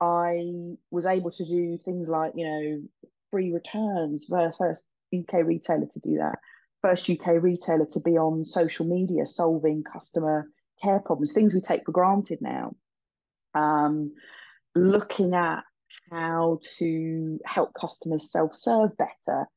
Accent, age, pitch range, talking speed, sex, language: British, 30-49, 155-180 Hz, 140 wpm, female, English